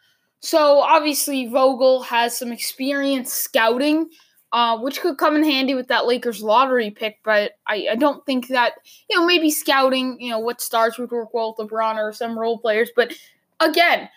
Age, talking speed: 10-29, 180 wpm